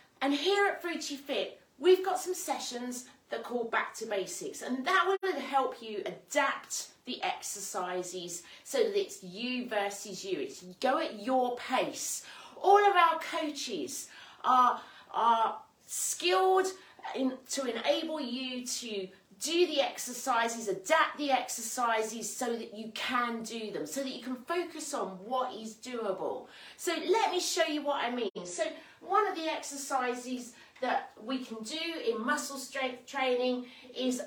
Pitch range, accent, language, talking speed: 225-305 Hz, British, English, 155 wpm